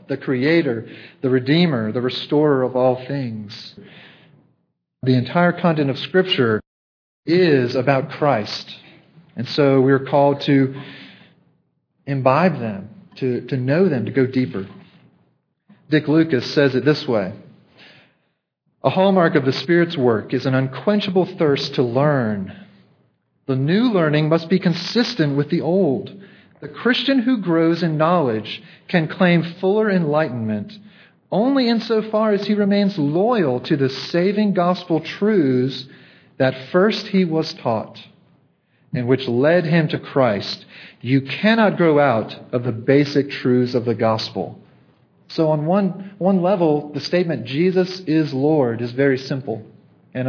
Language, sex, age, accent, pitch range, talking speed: English, male, 40-59, American, 130-175 Hz, 140 wpm